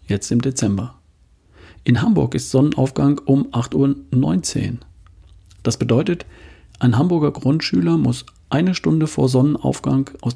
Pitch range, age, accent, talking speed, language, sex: 90-140 Hz, 40-59, German, 120 wpm, German, male